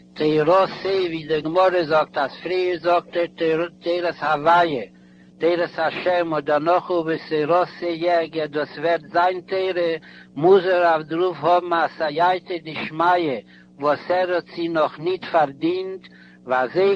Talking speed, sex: 95 wpm, male